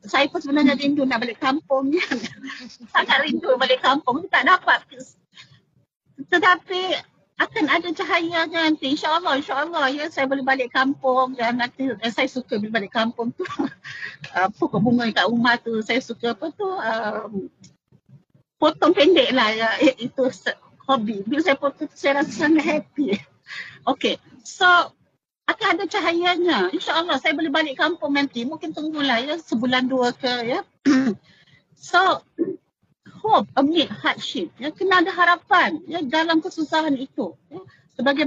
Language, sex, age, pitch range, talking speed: English, female, 40-59, 255-325 Hz, 140 wpm